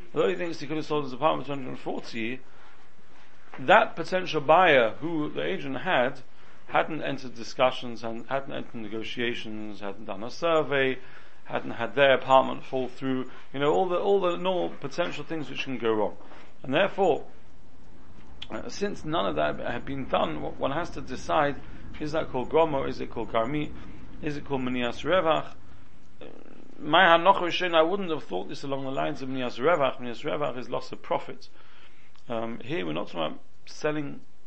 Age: 40-59